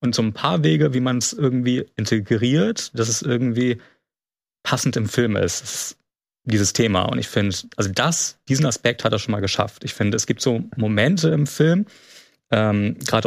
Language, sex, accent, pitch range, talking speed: German, male, German, 110-135 Hz, 190 wpm